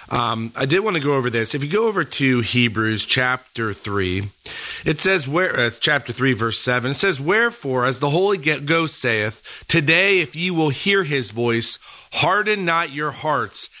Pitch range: 125-165 Hz